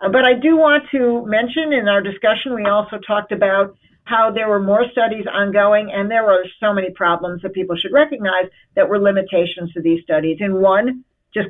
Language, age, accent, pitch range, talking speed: English, 50-69, American, 195-245 Hz, 200 wpm